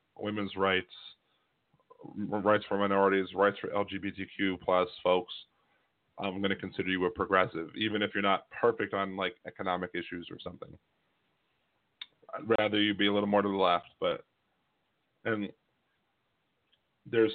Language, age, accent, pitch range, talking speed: English, 40-59, American, 95-105 Hz, 140 wpm